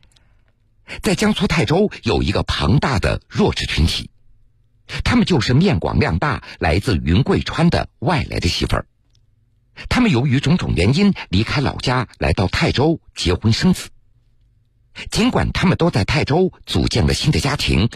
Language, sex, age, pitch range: Japanese, male, 50-69, 105-150 Hz